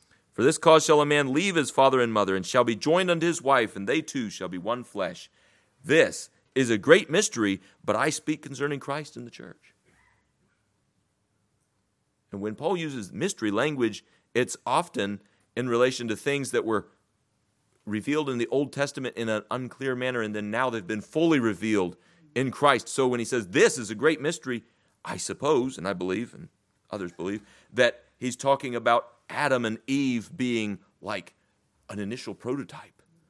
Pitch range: 110-150 Hz